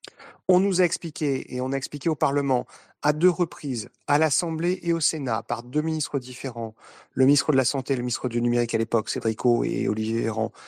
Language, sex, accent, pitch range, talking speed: French, male, French, 125-165 Hz, 210 wpm